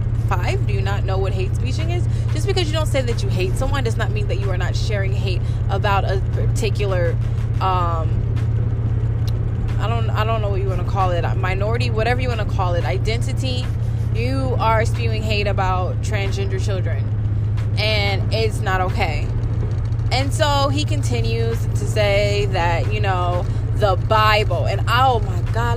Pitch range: 105-115 Hz